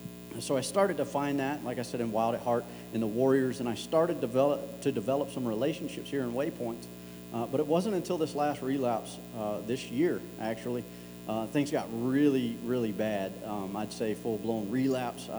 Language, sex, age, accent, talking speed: English, male, 40-59, American, 190 wpm